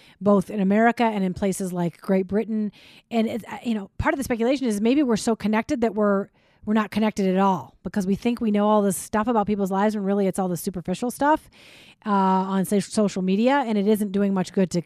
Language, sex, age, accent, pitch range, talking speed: English, female, 30-49, American, 195-250 Hz, 235 wpm